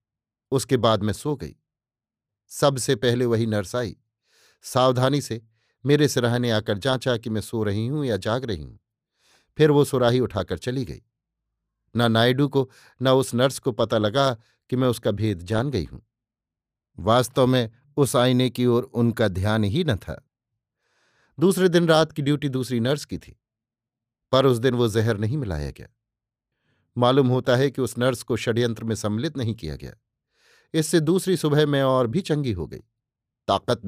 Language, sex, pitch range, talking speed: Hindi, male, 115-135 Hz, 175 wpm